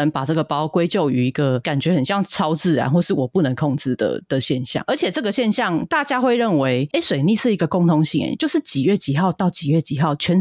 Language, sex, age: Chinese, female, 30-49